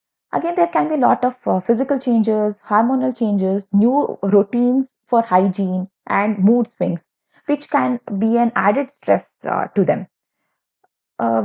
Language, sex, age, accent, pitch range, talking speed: English, female, 20-39, Indian, 195-265 Hz, 150 wpm